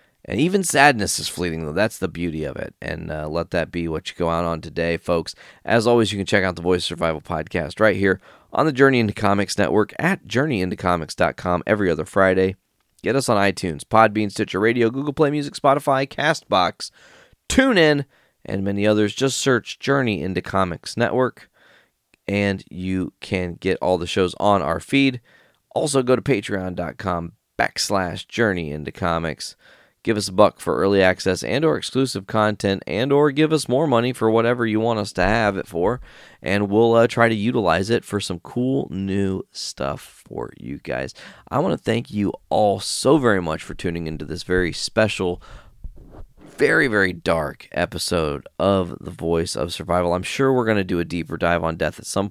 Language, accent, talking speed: English, American, 190 wpm